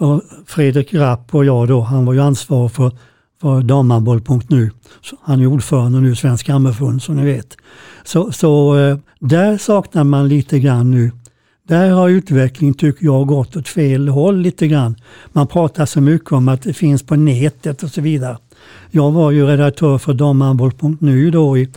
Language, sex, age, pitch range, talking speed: Swedish, male, 60-79, 130-155 Hz, 170 wpm